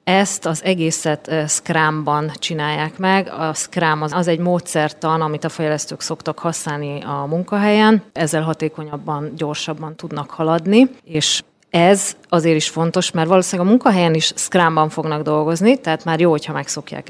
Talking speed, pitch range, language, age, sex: 145 wpm, 150-175 Hz, English, 30-49, female